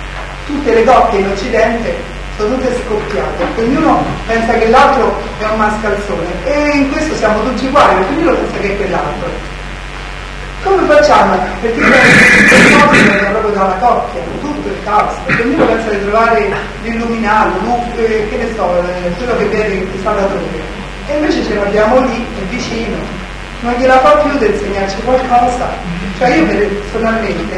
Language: Italian